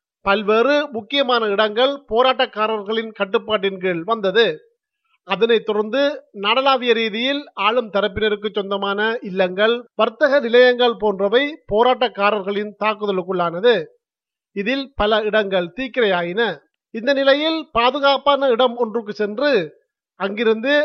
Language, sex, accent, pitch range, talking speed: Tamil, male, native, 210-260 Hz, 85 wpm